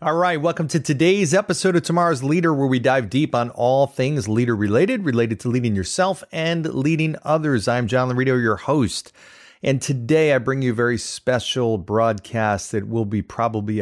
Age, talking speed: 30-49, 180 wpm